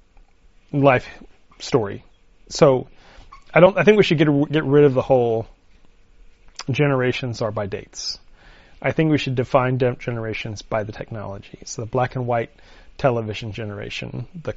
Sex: male